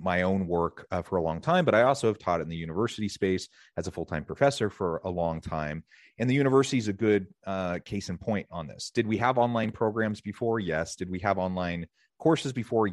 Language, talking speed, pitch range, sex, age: English, 230 wpm, 90-110 Hz, male, 30-49